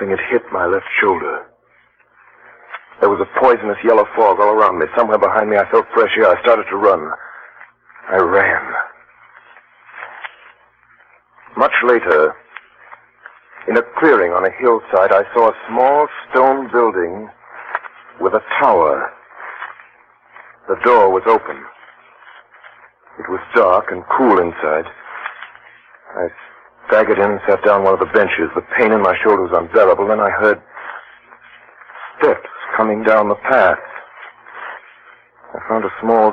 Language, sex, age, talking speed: English, male, 60-79, 140 wpm